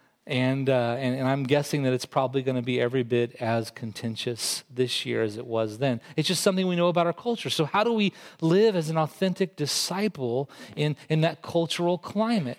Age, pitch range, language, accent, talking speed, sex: 40-59, 135-185 Hz, English, American, 210 wpm, male